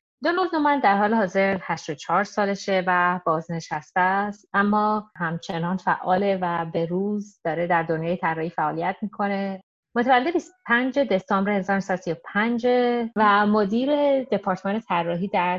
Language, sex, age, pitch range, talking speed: Persian, female, 30-49, 175-210 Hz, 120 wpm